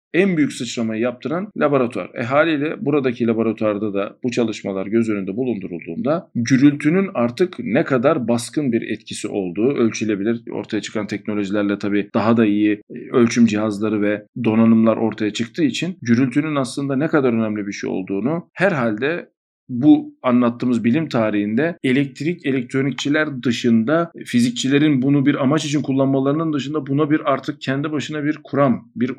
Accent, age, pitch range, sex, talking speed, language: native, 50-69, 115-135 Hz, male, 145 wpm, Turkish